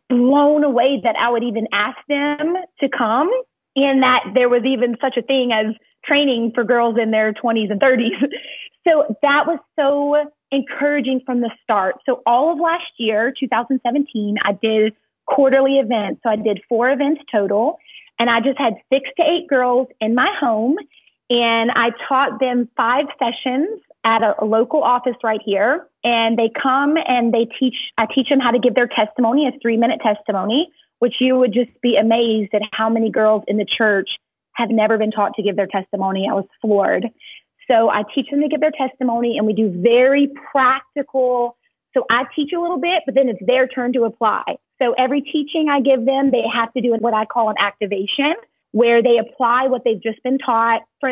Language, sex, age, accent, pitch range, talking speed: English, female, 30-49, American, 225-275 Hz, 195 wpm